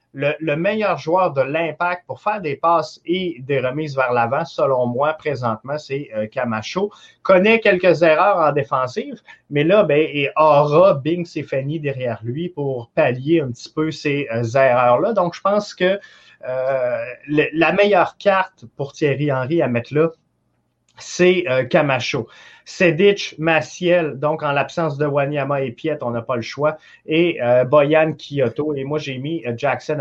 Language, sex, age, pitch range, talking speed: French, male, 30-49, 130-165 Hz, 170 wpm